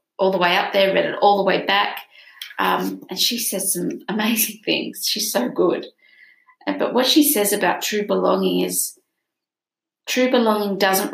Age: 30-49